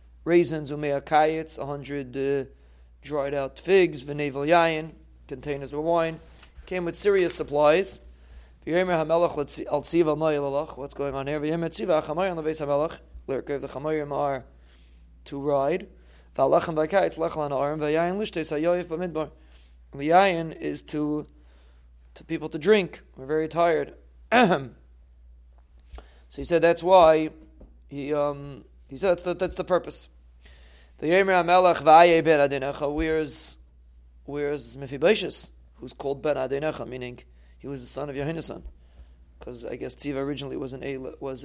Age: 30-49